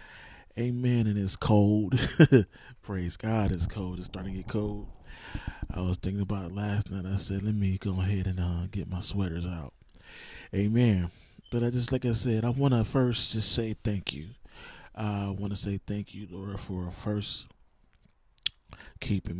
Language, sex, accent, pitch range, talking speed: English, male, American, 95-105 Hz, 180 wpm